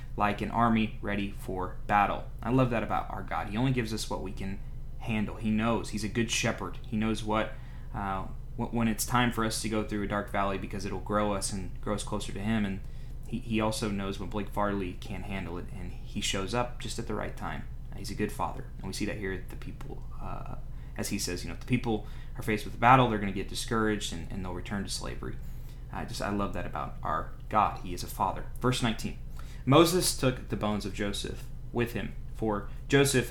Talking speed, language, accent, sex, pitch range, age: 240 wpm, English, American, male, 105-125 Hz, 20-39